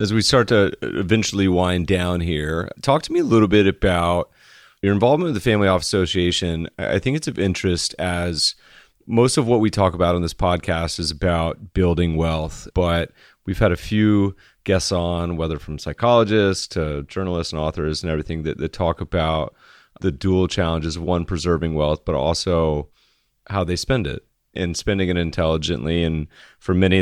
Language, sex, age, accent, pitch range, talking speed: English, male, 30-49, American, 85-100 Hz, 180 wpm